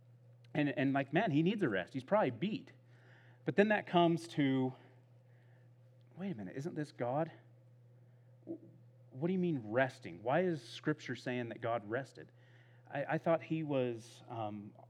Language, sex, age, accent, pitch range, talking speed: English, male, 30-49, American, 120-140 Hz, 160 wpm